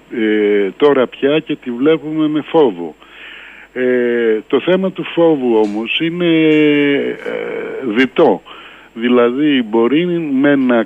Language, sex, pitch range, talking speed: Greek, male, 115-155 Hz, 100 wpm